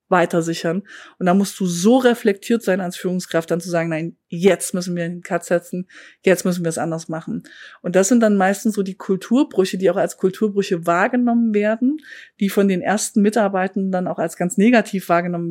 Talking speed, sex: 200 wpm, female